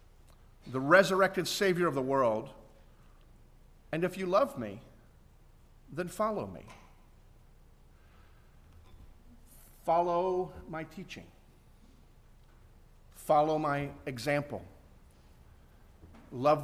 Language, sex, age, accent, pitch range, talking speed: English, male, 50-69, American, 110-170 Hz, 75 wpm